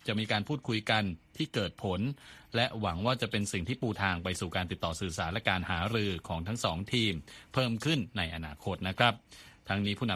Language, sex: Thai, male